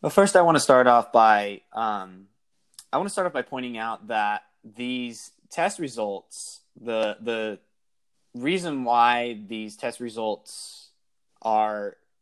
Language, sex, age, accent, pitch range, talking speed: English, male, 20-39, American, 110-130 Hz, 145 wpm